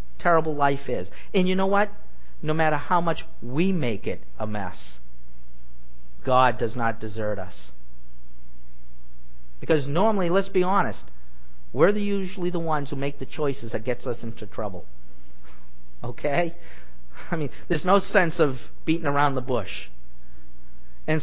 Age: 50-69